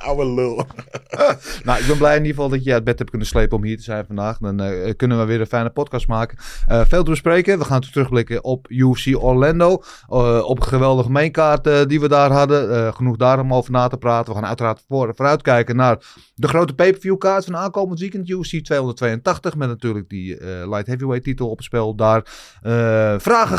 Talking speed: 210 wpm